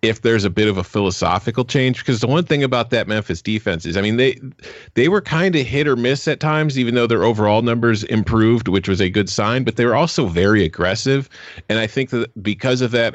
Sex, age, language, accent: male, 40-59, English, American